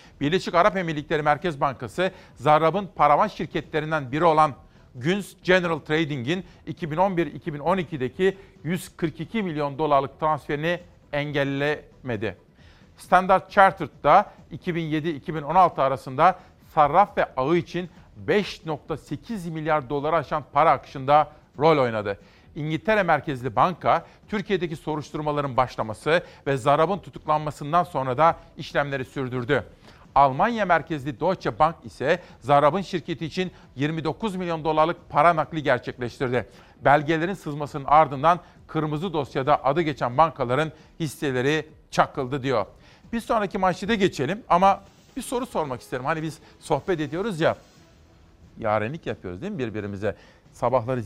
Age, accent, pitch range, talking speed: 40-59, native, 135-175 Hz, 110 wpm